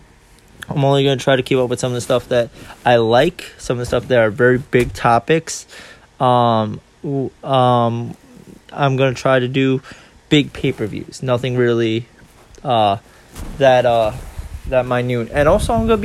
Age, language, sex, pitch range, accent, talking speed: 20-39, English, male, 105-130 Hz, American, 175 wpm